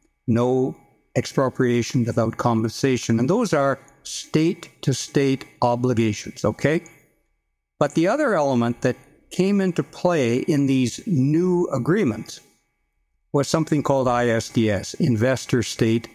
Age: 60-79